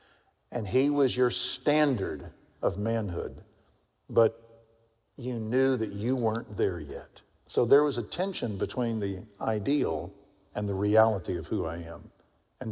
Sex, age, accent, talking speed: male, 50-69, American, 145 wpm